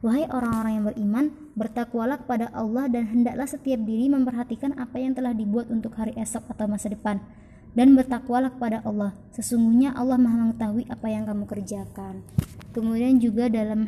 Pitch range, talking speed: 220-255 Hz, 160 wpm